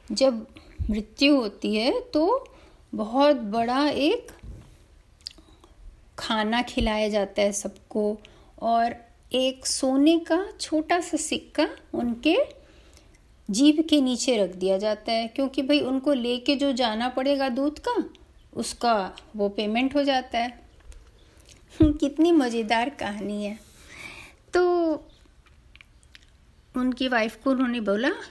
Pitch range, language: 230-320 Hz, Hindi